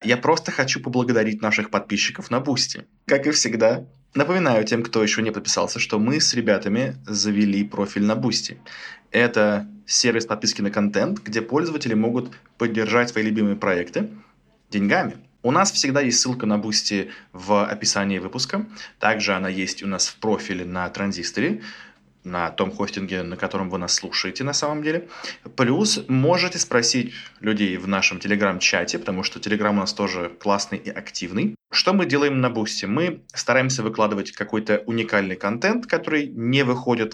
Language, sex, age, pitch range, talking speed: Russian, male, 20-39, 100-130 Hz, 160 wpm